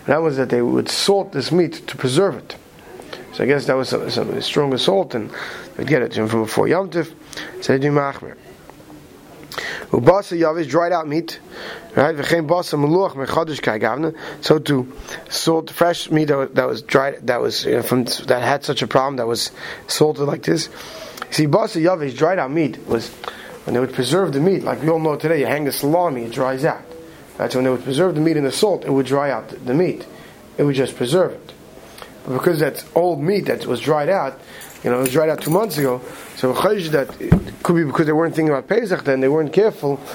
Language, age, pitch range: English, 30-49, 135-170 Hz